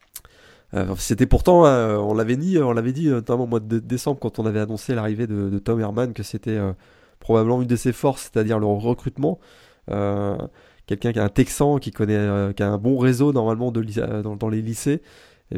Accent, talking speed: French, 225 wpm